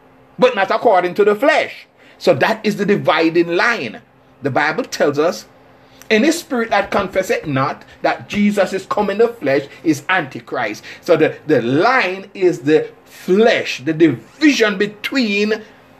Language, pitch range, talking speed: English, 155-235 Hz, 145 wpm